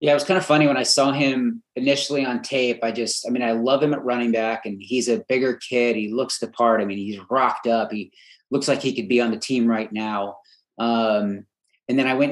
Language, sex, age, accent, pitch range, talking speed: English, male, 30-49, American, 110-135 Hz, 260 wpm